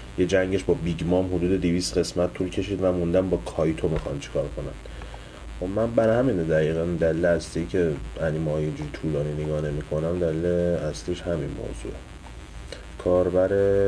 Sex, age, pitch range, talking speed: male, 30-49, 85-95 Hz, 150 wpm